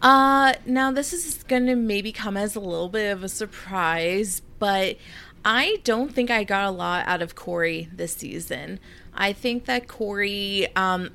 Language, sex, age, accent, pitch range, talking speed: English, female, 20-39, American, 185-235 Hz, 180 wpm